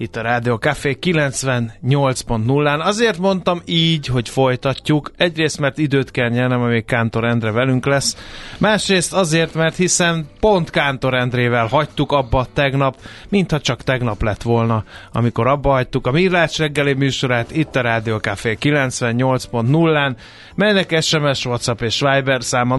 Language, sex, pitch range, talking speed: Hungarian, male, 120-150 Hz, 135 wpm